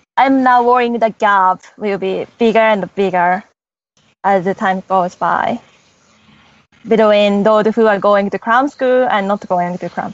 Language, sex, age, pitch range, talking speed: English, female, 20-39, 195-235 Hz, 165 wpm